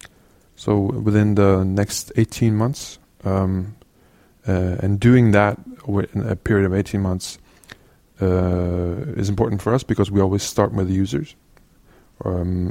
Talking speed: 140 wpm